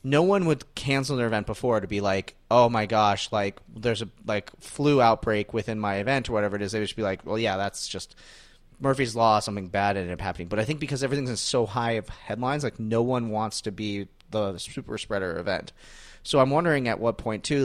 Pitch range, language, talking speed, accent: 105-130 Hz, English, 240 wpm, American